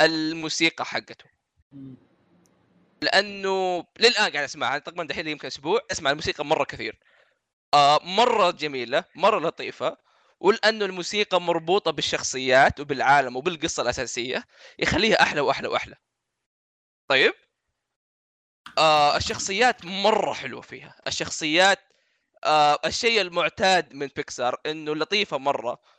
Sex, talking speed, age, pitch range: male, 105 wpm, 20-39, 130-180 Hz